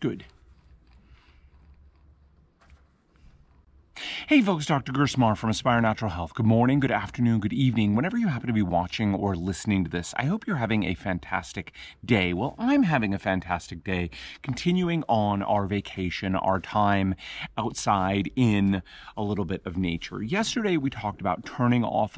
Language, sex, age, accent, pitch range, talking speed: English, male, 40-59, American, 95-135 Hz, 155 wpm